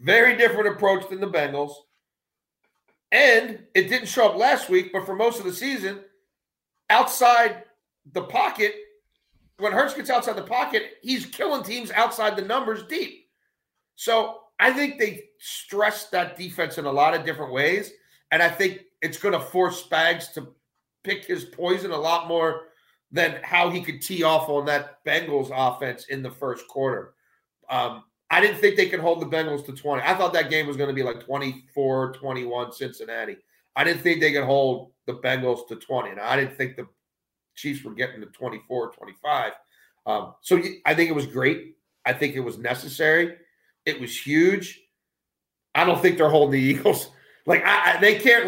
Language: English